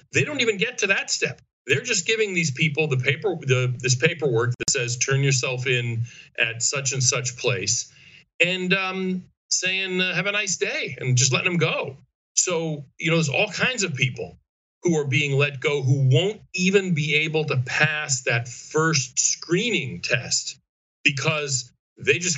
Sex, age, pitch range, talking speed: male, 40-59, 125-165 Hz, 175 wpm